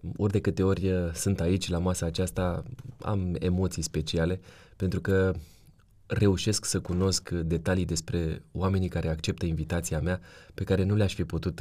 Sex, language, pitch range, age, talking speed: male, Romanian, 85-100 Hz, 20-39, 155 wpm